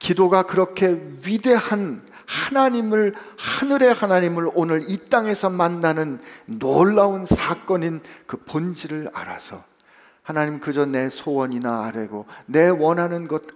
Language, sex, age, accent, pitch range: Korean, male, 50-69, native, 135-185 Hz